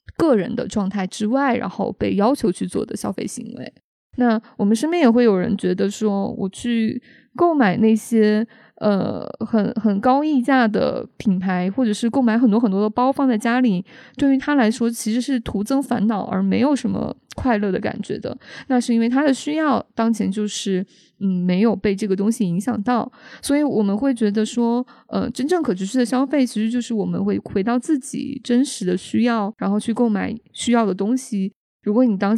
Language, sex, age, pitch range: Chinese, female, 20-39, 205-245 Hz